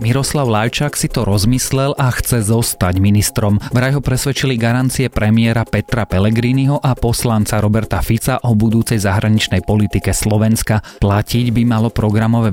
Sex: male